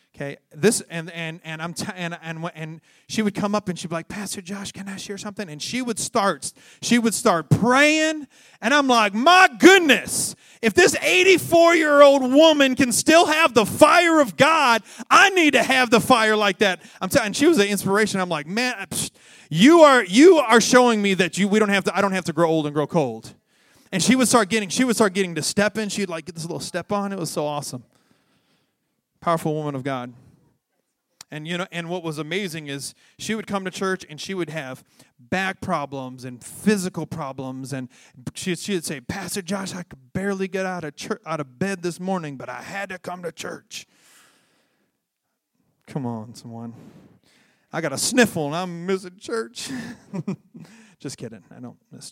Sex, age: male, 30-49